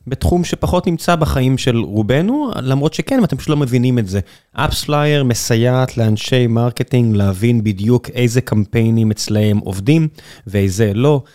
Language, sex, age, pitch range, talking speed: Hebrew, male, 20-39, 110-125 Hz, 145 wpm